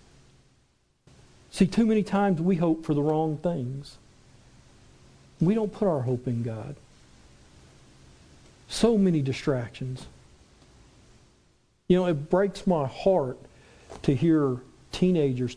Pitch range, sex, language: 125-175 Hz, male, English